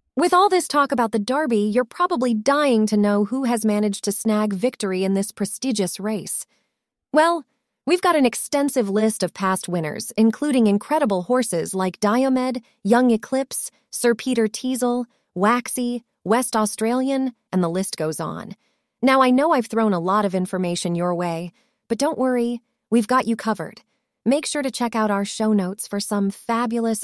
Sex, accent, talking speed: female, American, 175 wpm